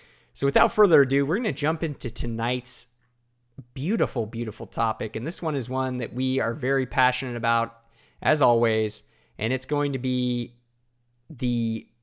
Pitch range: 115-135 Hz